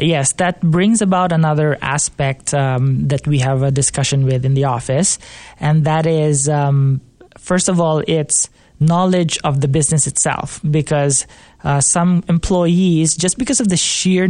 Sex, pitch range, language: male, 140-165 Hz, English